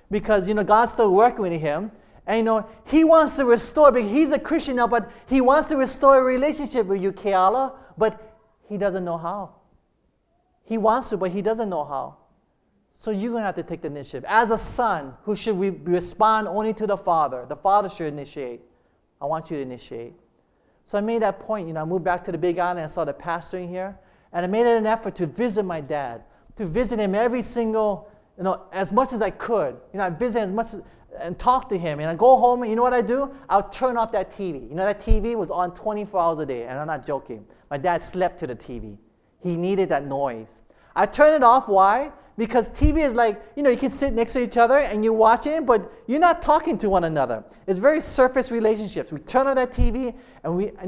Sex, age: male, 30-49